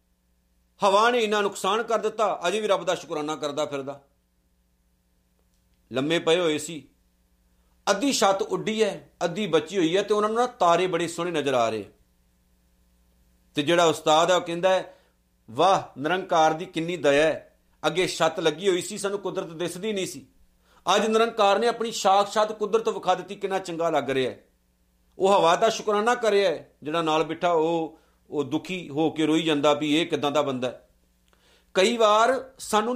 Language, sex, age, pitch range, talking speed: Punjabi, male, 50-69, 130-190 Hz, 170 wpm